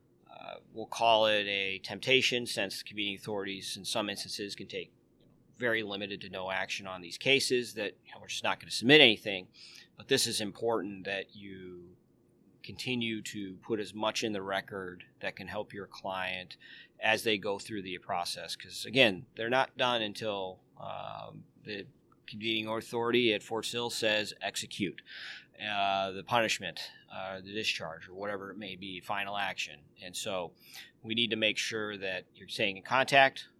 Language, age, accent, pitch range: English, 30-49, American, 100-120 Hz